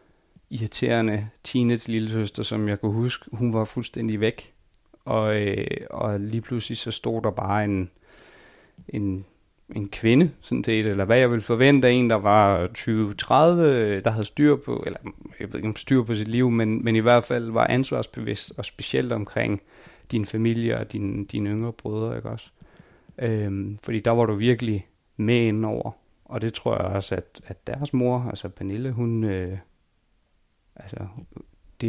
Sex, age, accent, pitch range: male, 30-49, native, 105-120 Hz